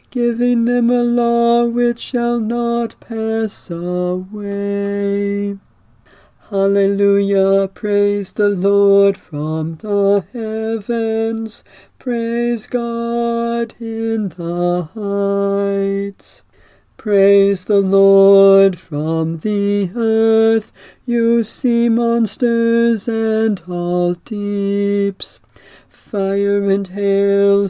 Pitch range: 195-230 Hz